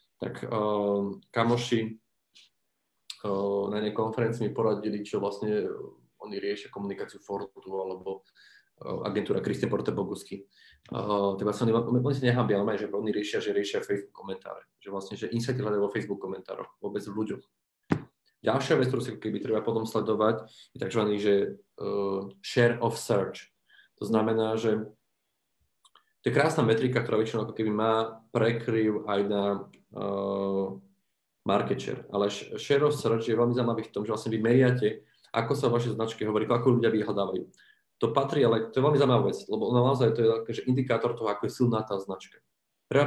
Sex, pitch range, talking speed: male, 105-120 Hz, 155 wpm